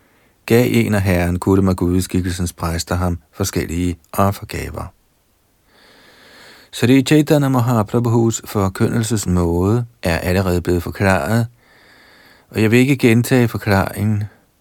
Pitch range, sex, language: 90-120 Hz, male, Danish